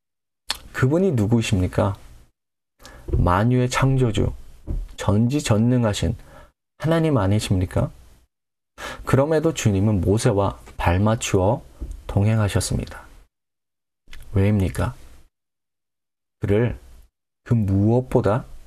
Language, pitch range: Korean, 95-130 Hz